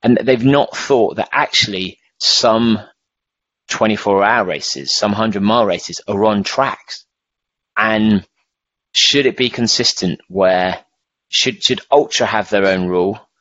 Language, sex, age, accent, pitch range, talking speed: English, male, 30-49, British, 95-125 Hz, 135 wpm